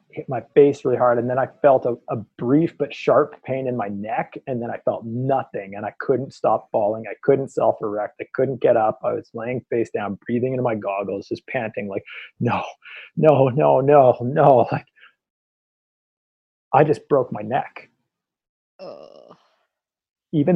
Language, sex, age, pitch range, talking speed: English, male, 30-49, 110-135 Hz, 180 wpm